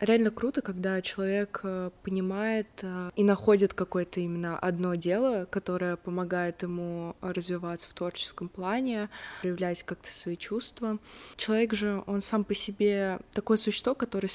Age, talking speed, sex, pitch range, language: 20-39, 130 wpm, female, 180-215 Hz, Russian